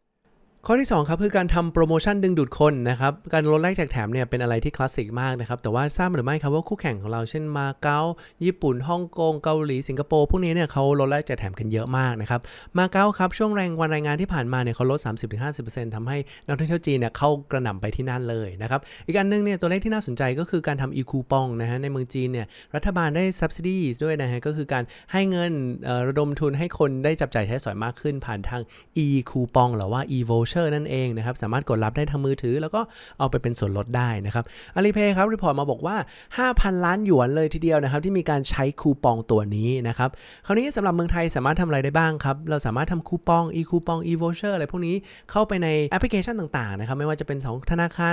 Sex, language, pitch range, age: male, Thai, 125-170 Hz, 20-39